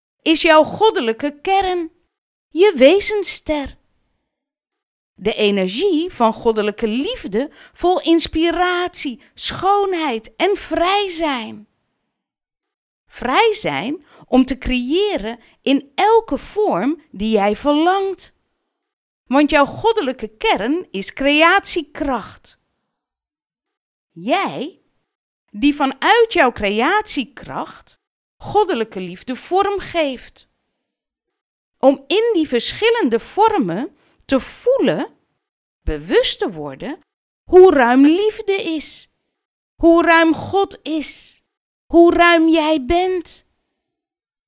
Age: 40-59